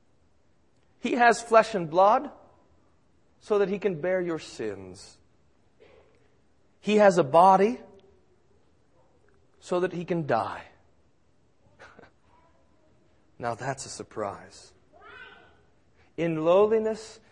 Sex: male